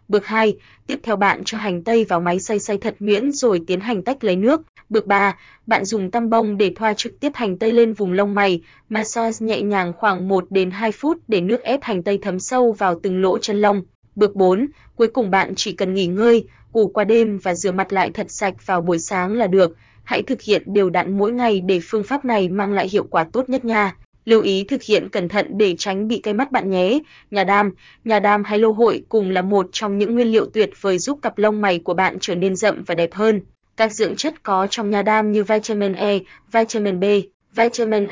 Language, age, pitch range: Vietnamese, 20-39, 195-225 Hz